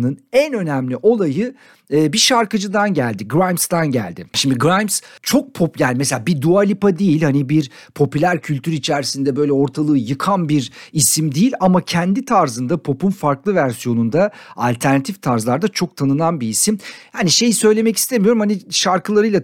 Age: 50-69